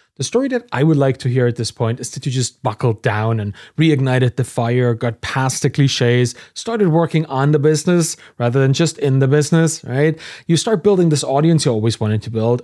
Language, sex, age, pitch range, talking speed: English, male, 30-49, 120-160 Hz, 225 wpm